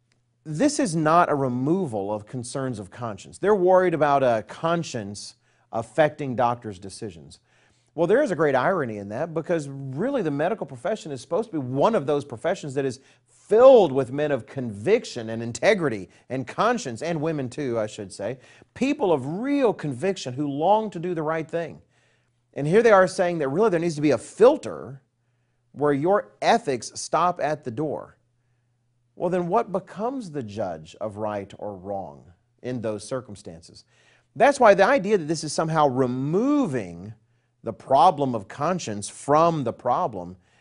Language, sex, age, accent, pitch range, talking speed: English, male, 40-59, American, 120-175 Hz, 170 wpm